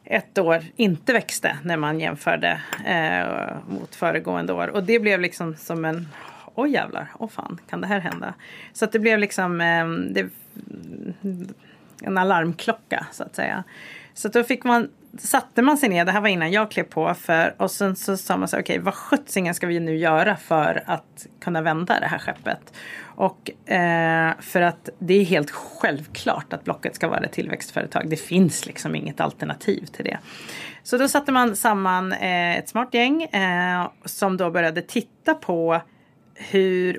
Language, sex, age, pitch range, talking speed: English, female, 30-49, 165-210 Hz, 185 wpm